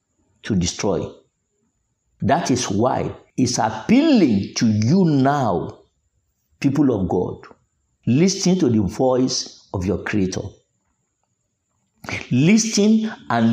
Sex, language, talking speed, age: male, English, 100 wpm, 50-69